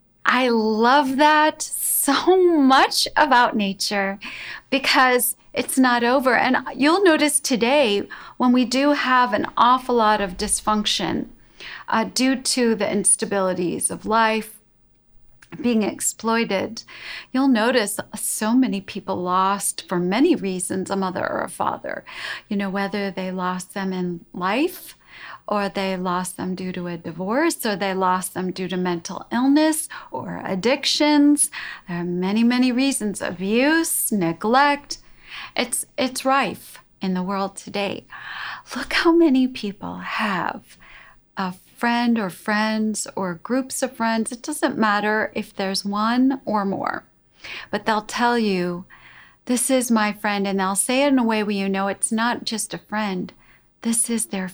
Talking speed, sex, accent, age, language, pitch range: 145 wpm, female, American, 40-59, English, 195-260 Hz